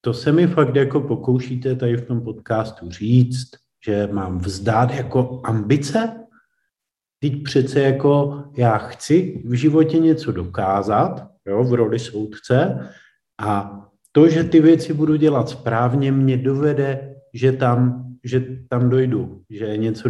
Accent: native